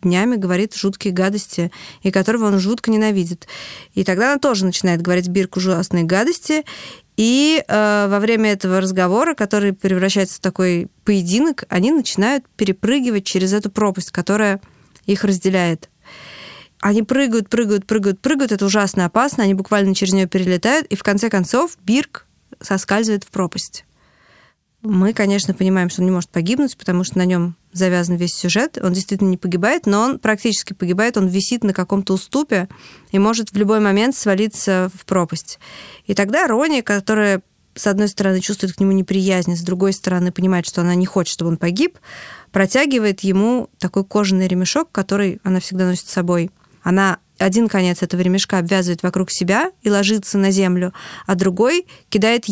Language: Russian